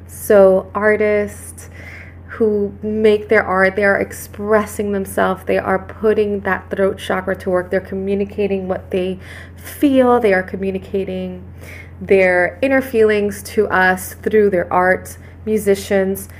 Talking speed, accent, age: 130 wpm, American, 20-39